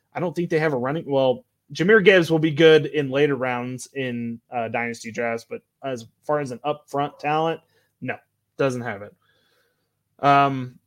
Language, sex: English, male